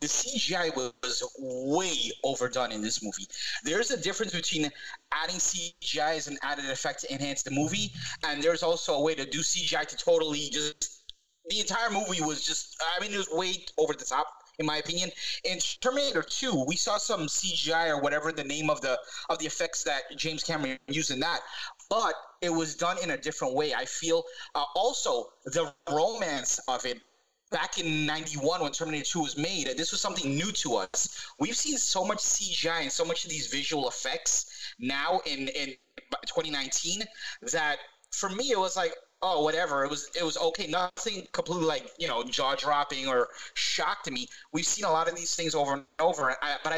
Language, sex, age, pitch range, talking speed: English, male, 30-49, 145-190 Hz, 195 wpm